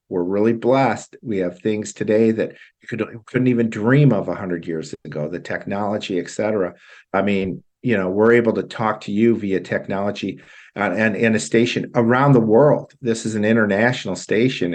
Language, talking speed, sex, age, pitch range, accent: English, 180 wpm, male, 50-69, 90-115 Hz, American